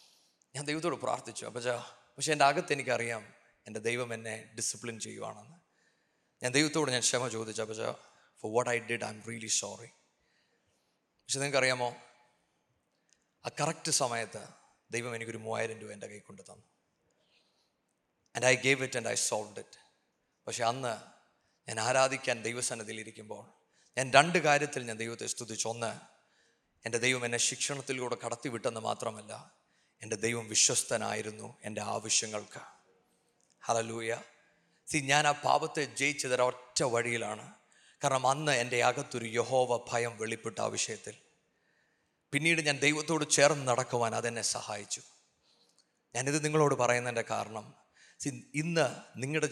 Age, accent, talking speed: 30-49, native, 120 wpm